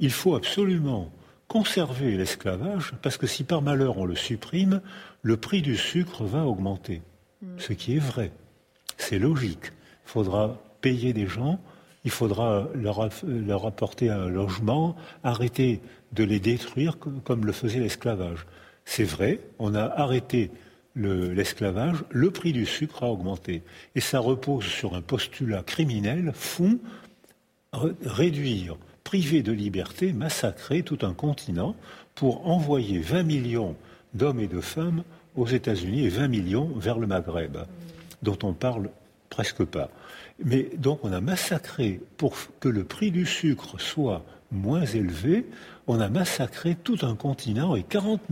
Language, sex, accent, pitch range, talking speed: French, male, French, 110-165 Hz, 145 wpm